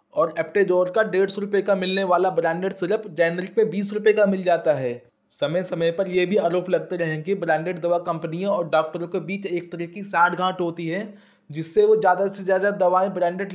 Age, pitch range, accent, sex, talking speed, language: 20-39, 165-195 Hz, native, male, 215 wpm, Hindi